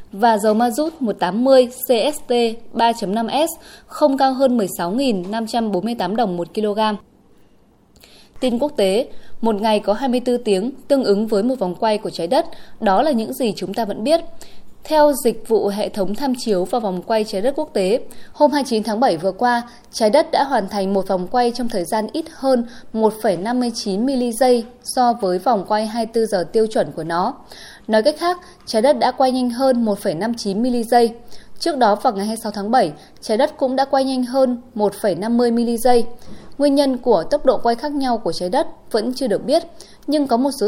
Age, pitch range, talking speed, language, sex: 20-39, 210-265 Hz, 190 wpm, Vietnamese, female